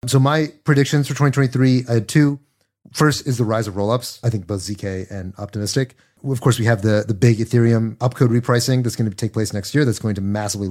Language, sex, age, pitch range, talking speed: English, male, 30-49, 105-125 Hz, 230 wpm